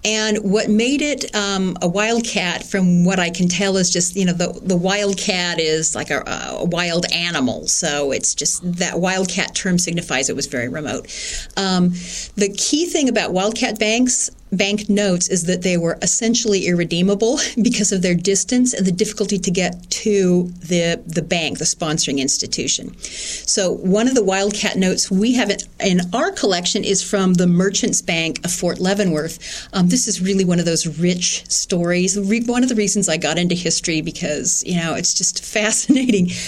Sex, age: female, 40-59